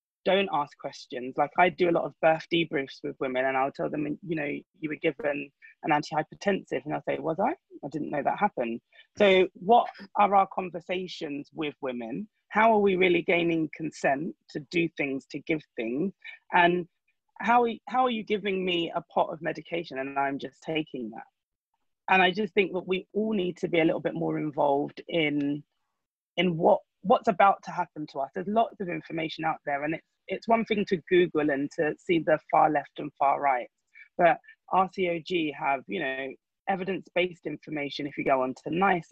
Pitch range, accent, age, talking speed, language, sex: 150-195 Hz, British, 20-39, 195 wpm, English, female